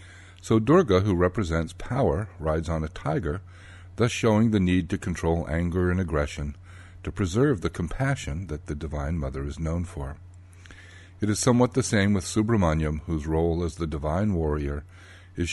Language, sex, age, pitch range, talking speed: English, male, 60-79, 80-95 Hz, 165 wpm